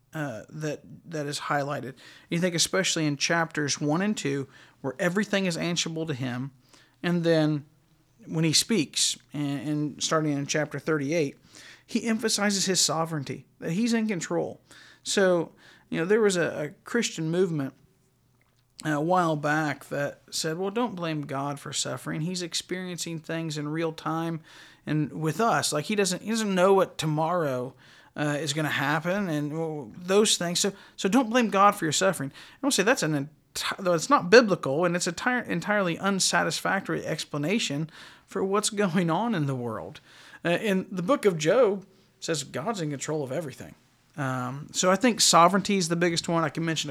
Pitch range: 145-190 Hz